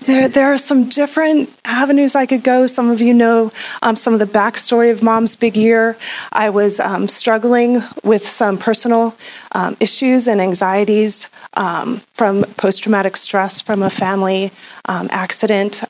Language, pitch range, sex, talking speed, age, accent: English, 200-235 Hz, female, 160 wpm, 30-49, American